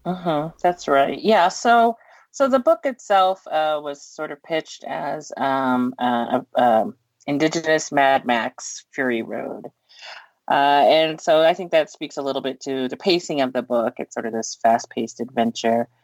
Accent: American